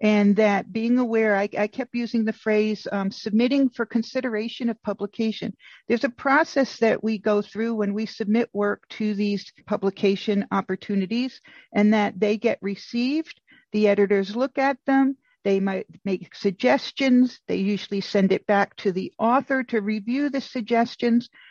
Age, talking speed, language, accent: 50-69, 160 wpm, English, American